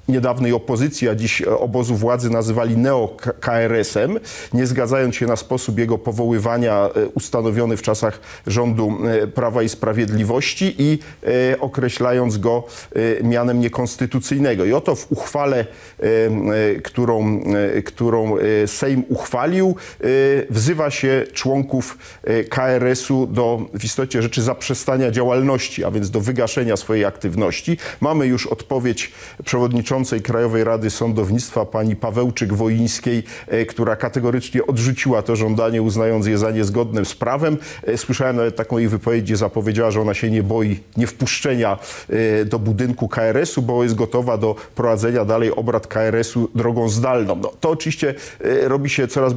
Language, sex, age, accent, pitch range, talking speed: Polish, male, 40-59, native, 110-130 Hz, 125 wpm